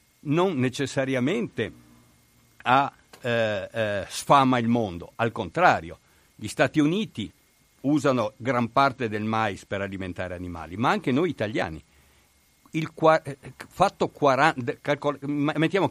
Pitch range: 105-145 Hz